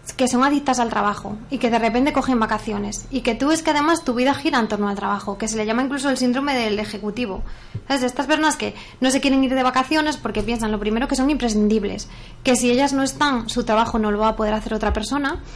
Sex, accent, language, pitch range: female, Spanish, Spanish, 220-270 Hz